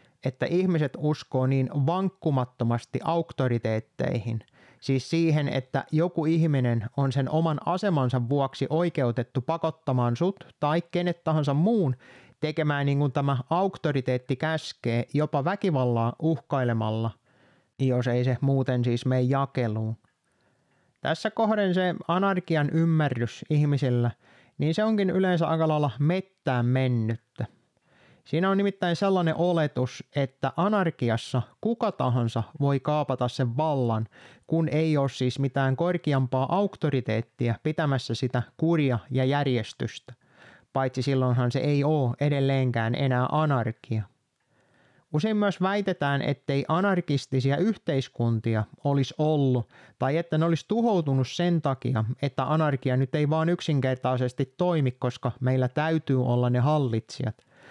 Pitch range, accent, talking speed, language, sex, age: 125-160 Hz, native, 120 wpm, Finnish, male, 30-49